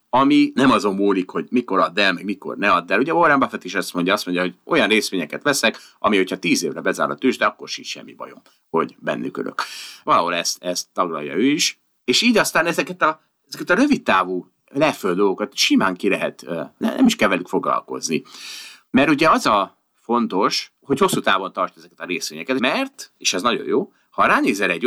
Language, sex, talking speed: Hungarian, male, 205 wpm